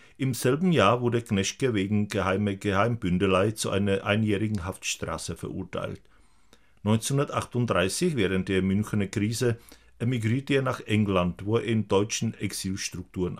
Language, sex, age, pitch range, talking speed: Czech, male, 50-69, 95-115 Hz, 120 wpm